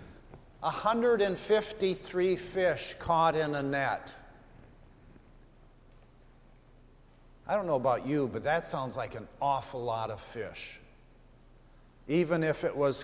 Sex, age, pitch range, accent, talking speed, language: male, 50-69, 130-170 Hz, American, 125 wpm, English